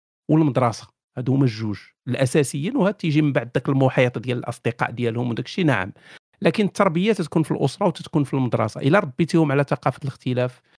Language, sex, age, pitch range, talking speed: Arabic, male, 50-69, 125-160 Hz, 165 wpm